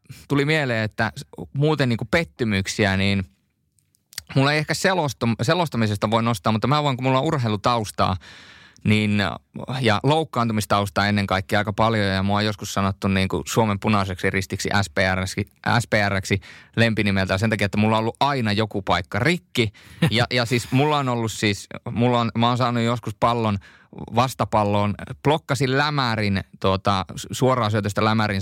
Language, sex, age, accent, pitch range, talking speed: Finnish, male, 20-39, native, 105-135 Hz, 150 wpm